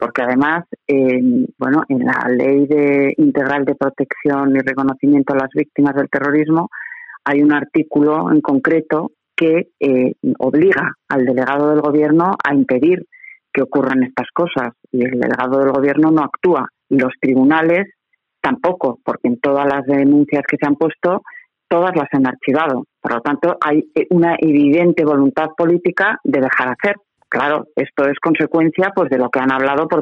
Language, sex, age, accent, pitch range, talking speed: Spanish, female, 40-59, Spanish, 140-170 Hz, 160 wpm